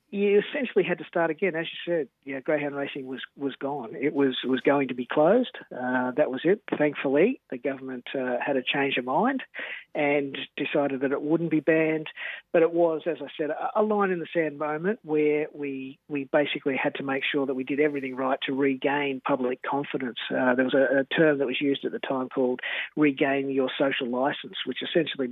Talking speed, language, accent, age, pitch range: 215 wpm, English, Australian, 50-69, 130-150 Hz